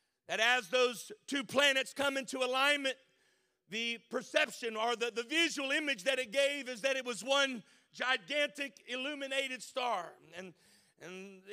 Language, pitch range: English, 240-280 Hz